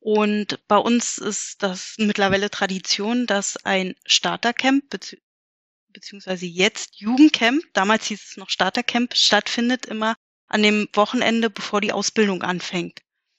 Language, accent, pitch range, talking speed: German, German, 205-235 Hz, 120 wpm